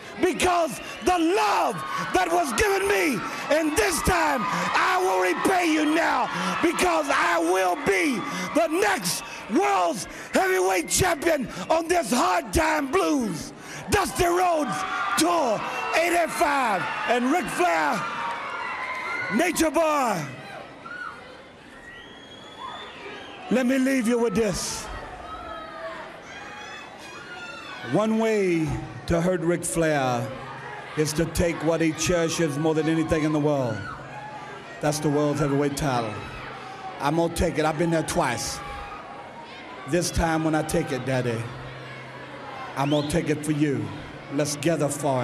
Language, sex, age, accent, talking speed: English, male, 50-69, American, 120 wpm